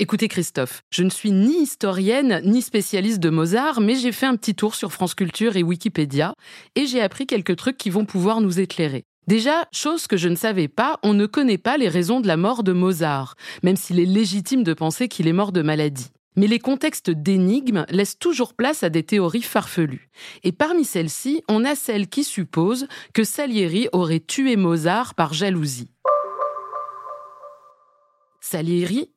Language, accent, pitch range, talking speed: French, French, 175-245 Hz, 180 wpm